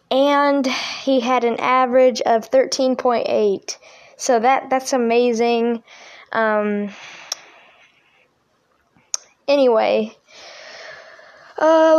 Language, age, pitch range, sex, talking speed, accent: English, 10-29, 220-280 Hz, female, 80 wpm, American